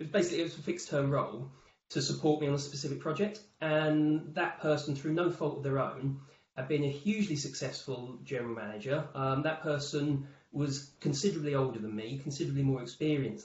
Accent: British